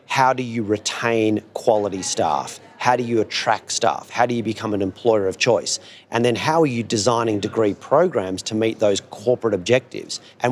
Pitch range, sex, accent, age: 105-125 Hz, male, Australian, 40-59